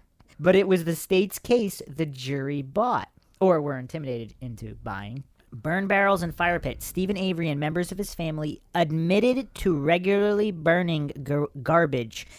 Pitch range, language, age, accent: 130-170 Hz, English, 40-59, American